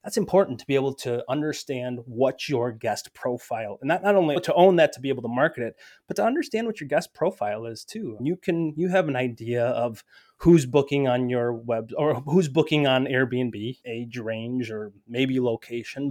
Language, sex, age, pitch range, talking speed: English, male, 20-39, 120-150 Hz, 210 wpm